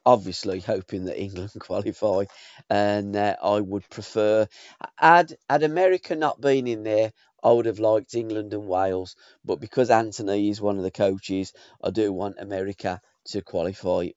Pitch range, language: 105-120 Hz, English